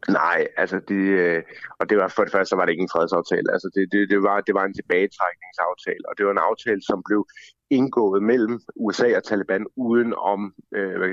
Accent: native